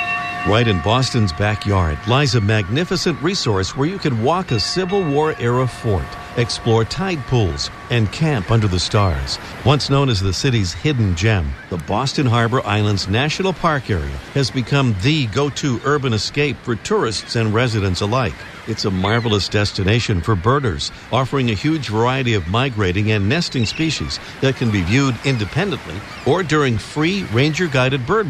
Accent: American